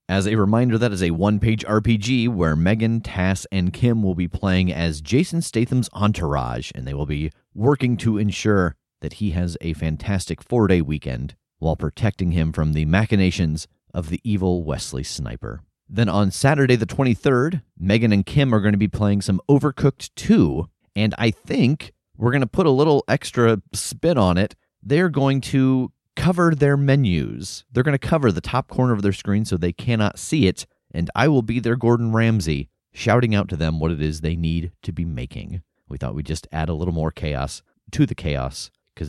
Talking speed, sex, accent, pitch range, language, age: 195 wpm, male, American, 85-120 Hz, English, 30-49